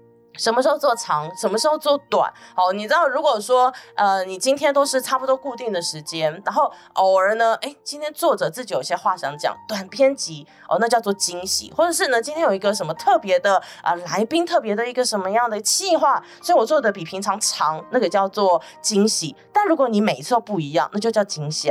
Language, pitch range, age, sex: Chinese, 200-295 Hz, 20-39, female